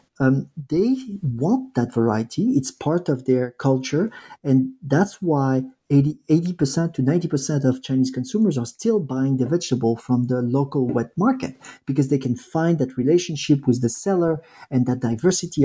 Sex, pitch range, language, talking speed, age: male, 125-145 Hz, English, 155 wpm, 40-59